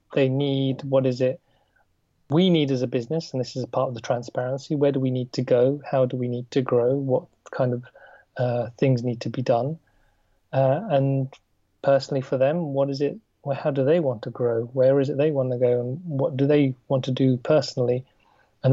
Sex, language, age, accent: male, English, 30-49, British